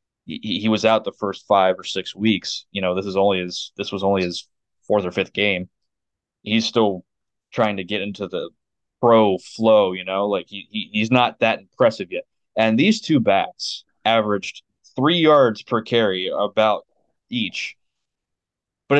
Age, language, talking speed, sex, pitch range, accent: 20-39, English, 175 wpm, male, 100-125 Hz, American